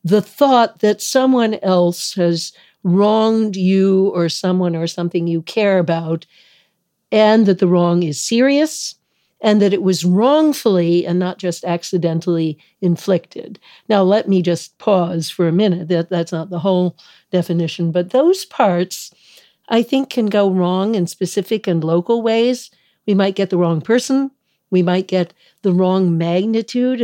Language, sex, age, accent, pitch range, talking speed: English, female, 60-79, American, 175-220 Hz, 155 wpm